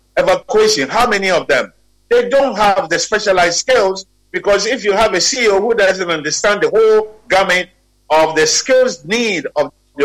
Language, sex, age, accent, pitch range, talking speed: English, male, 50-69, Nigerian, 165-250 Hz, 175 wpm